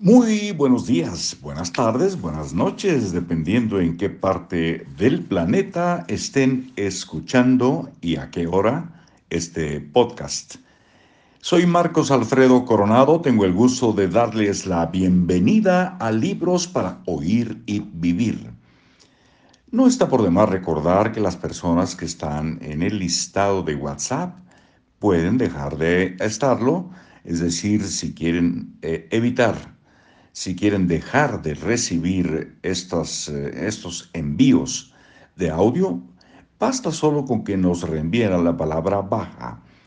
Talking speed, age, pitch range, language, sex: 120 wpm, 60-79, 85-130 Hz, Spanish, male